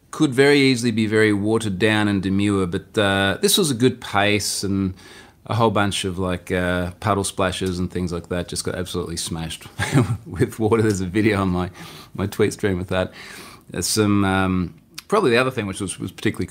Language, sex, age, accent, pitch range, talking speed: English, male, 30-49, Australian, 90-115 Hz, 205 wpm